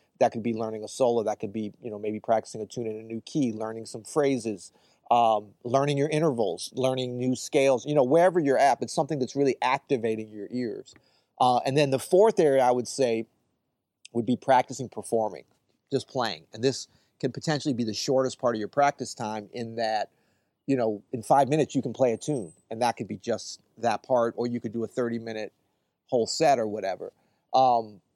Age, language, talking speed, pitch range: 30-49, English, 210 wpm, 115-140 Hz